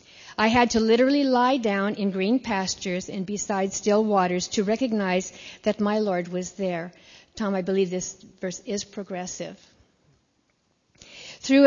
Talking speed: 145 wpm